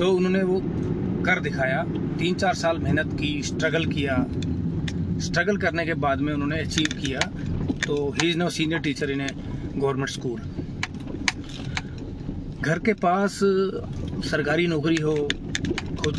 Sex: male